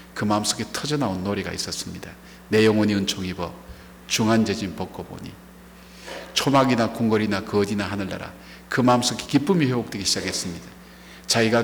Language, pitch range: Korean, 95-135 Hz